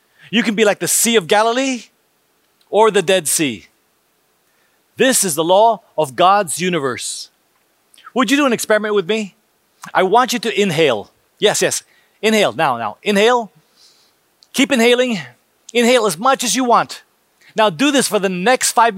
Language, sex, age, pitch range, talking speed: English, male, 30-49, 195-240 Hz, 165 wpm